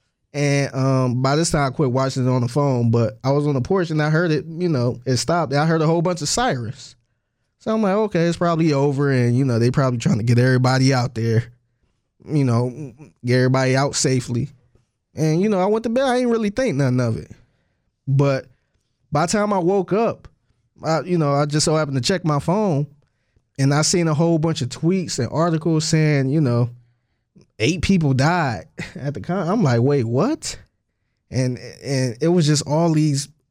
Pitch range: 125-160 Hz